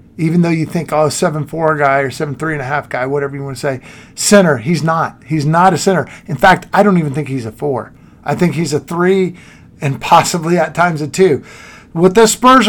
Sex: male